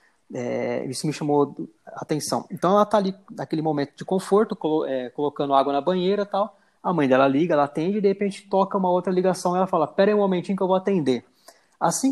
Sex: male